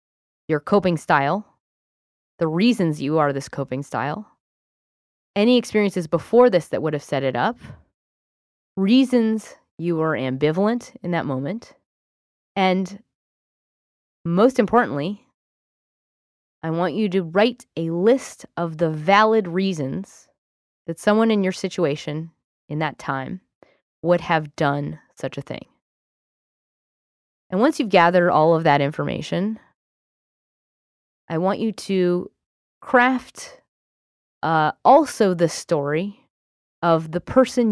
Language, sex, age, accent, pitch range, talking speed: English, female, 20-39, American, 145-195 Hz, 120 wpm